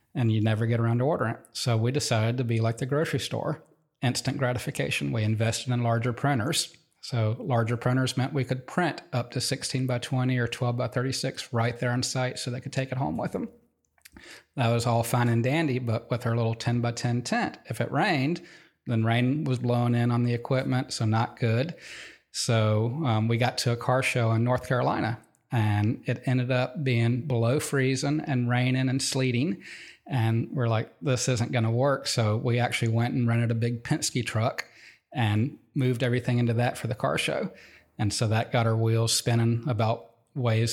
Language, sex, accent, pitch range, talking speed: English, male, American, 115-130 Hz, 200 wpm